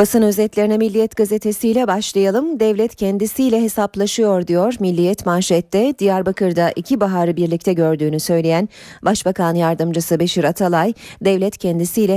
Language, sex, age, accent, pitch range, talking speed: Turkish, female, 30-49, native, 160-205 Hz, 115 wpm